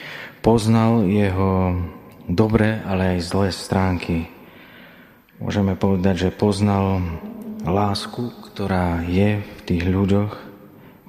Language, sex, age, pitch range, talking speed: Slovak, male, 30-49, 95-105 Hz, 95 wpm